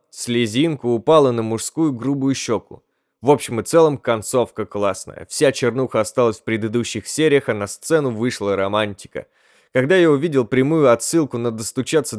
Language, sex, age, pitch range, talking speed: Russian, male, 20-39, 110-140 Hz, 150 wpm